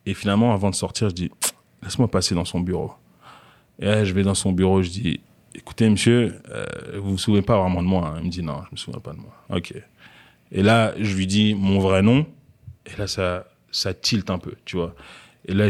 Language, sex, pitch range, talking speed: French, male, 100-130 Hz, 245 wpm